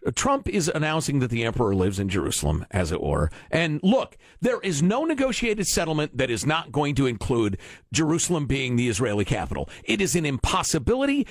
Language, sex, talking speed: English, male, 180 wpm